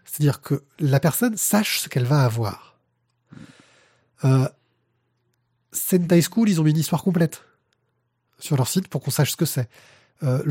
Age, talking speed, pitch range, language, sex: 20-39, 160 wpm, 130-180 Hz, French, male